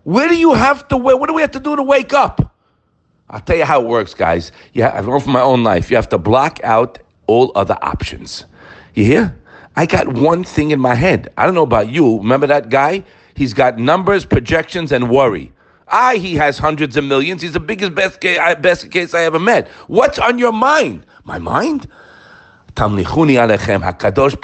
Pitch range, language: 125-195 Hz, English